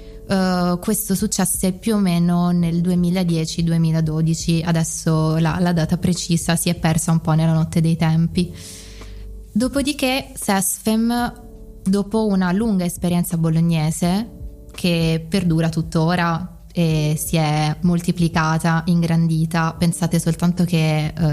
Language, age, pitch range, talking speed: Italian, 20-39, 165-185 Hz, 115 wpm